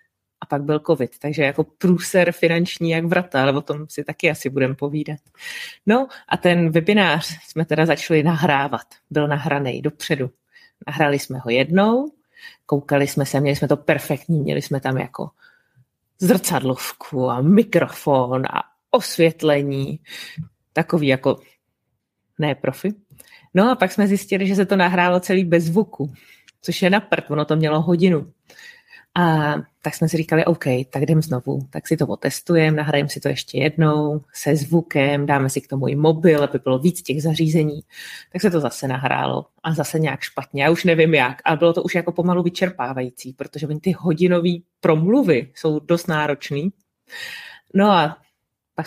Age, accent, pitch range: 30-49, native, 140-175 Hz